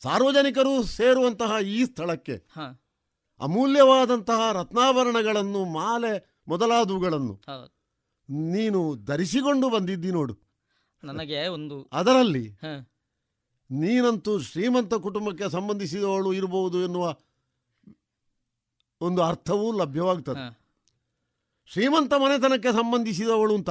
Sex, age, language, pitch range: male, 50-69, Kannada, 140-230 Hz